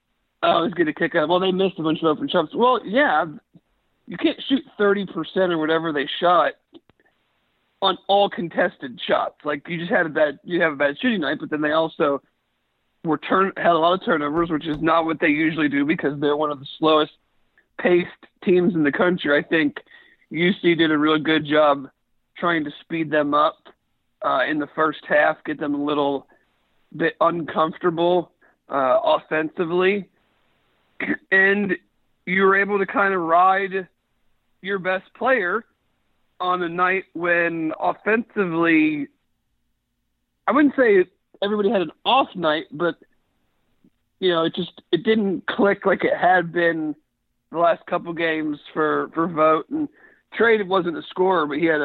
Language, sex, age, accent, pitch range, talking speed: English, male, 40-59, American, 155-195 Hz, 170 wpm